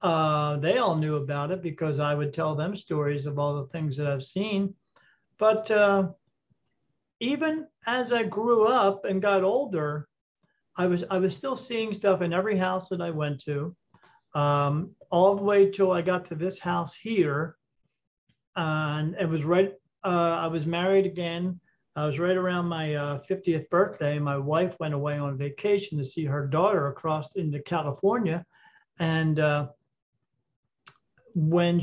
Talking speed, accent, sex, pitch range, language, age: 165 wpm, American, male, 150-190 Hz, English, 50-69